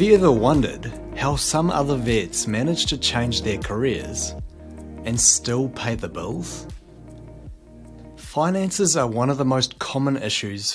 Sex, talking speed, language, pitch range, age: male, 145 wpm, English, 105-135 Hz, 30-49